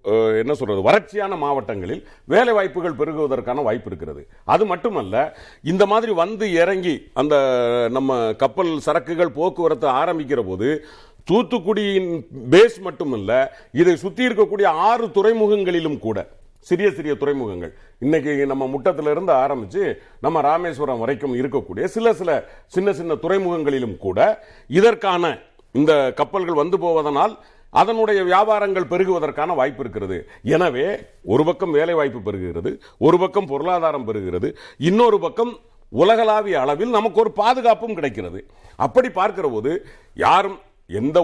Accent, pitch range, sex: native, 145-215 Hz, male